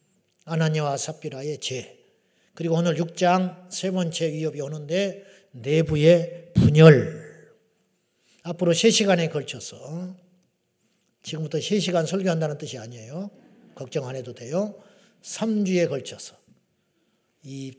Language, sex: Korean, male